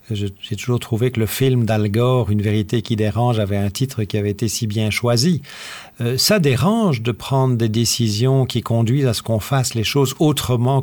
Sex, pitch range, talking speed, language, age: male, 115-150 Hz, 205 wpm, French, 50-69